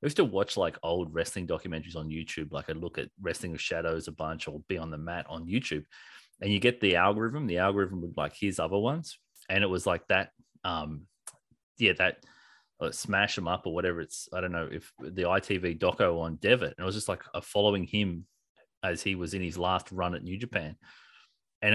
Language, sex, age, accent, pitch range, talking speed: English, male, 30-49, Australian, 85-115 Hz, 225 wpm